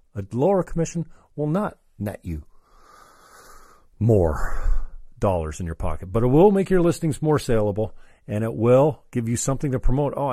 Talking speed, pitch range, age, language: 170 wpm, 105-150 Hz, 50-69, English